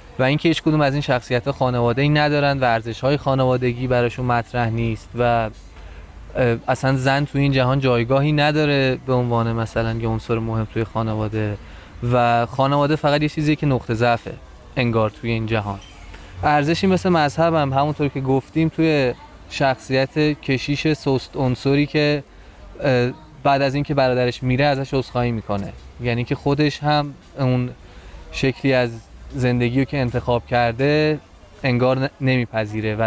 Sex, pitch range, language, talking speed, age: male, 115-140 Hz, Persian, 145 wpm, 20-39